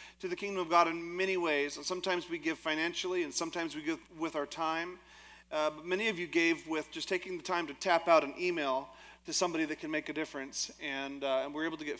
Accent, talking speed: American, 250 wpm